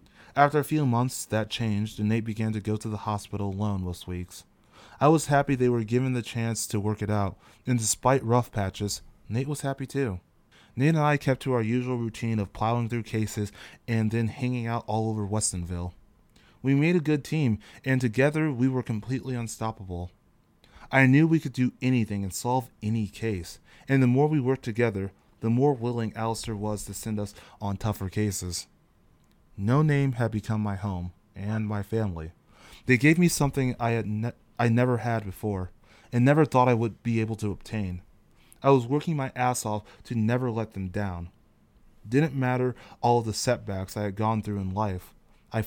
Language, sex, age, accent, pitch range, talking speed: English, male, 20-39, American, 105-125 Hz, 195 wpm